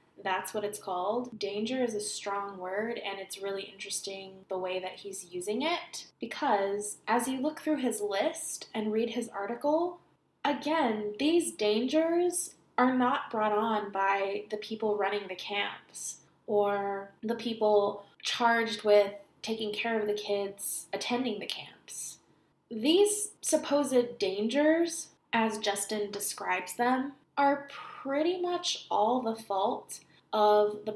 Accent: American